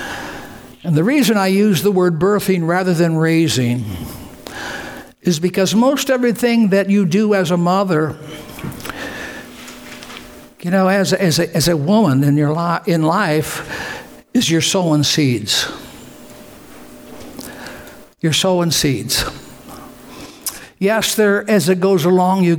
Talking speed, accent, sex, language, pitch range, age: 130 wpm, American, male, English, 150-190 Hz, 60-79